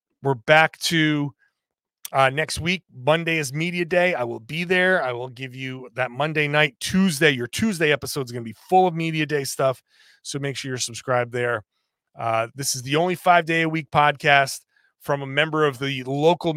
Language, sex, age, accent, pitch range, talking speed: English, male, 30-49, American, 135-190 Hz, 205 wpm